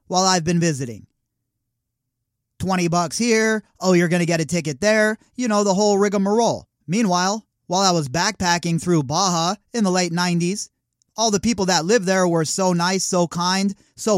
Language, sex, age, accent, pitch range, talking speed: English, male, 30-49, American, 170-205 Hz, 180 wpm